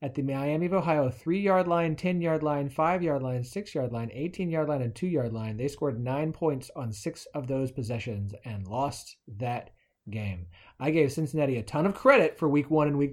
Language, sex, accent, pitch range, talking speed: English, male, American, 125-165 Hz, 195 wpm